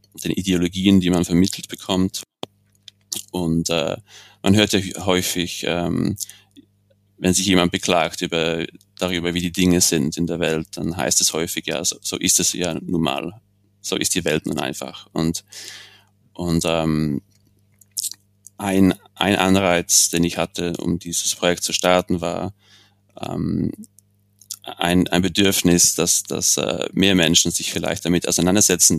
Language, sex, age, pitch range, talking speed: German, male, 30-49, 85-100 Hz, 145 wpm